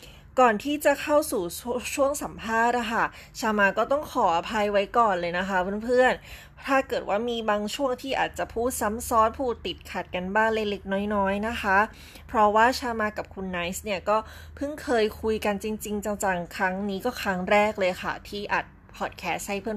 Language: Thai